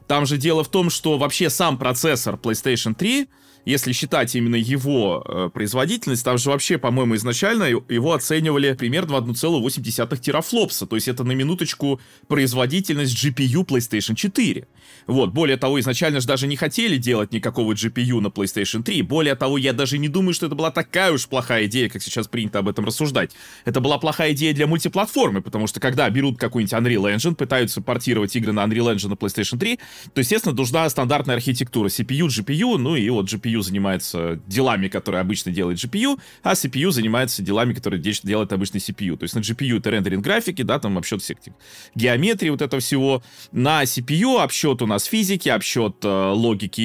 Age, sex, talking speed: 20-39, male, 180 wpm